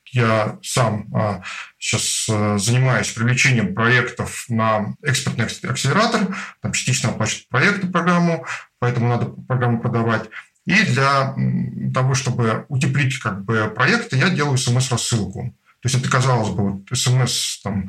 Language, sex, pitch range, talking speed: Russian, male, 115-140 Hz, 110 wpm